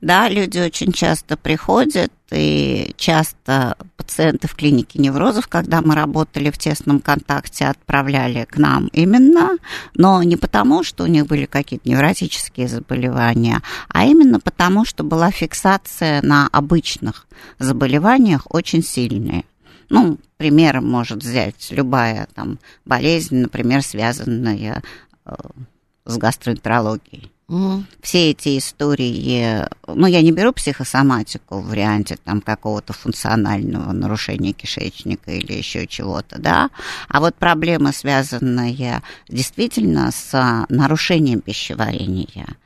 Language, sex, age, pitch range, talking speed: Russian, female, 50-69, 120-165 Hz, 110 wpm